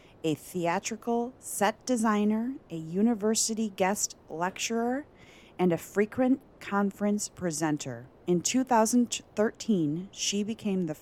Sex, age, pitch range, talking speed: female, 30-49, 160-205 Hz, 100 wpm